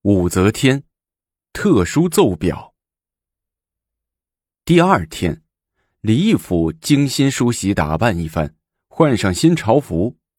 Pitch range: 85-115 Hz